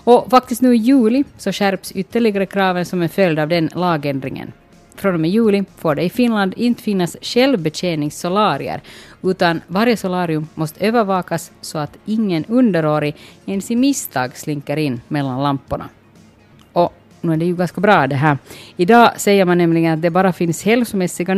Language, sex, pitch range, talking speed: Swedish, female, 155-210 Hz, 170 wpm